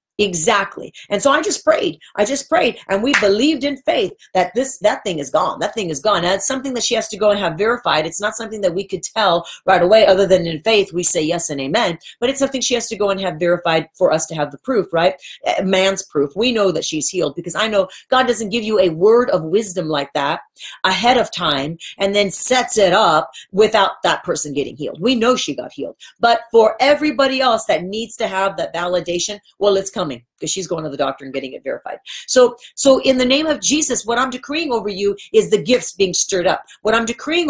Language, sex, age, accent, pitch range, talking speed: English, female, 40-59, American, 190-250 Hz, 245 wpm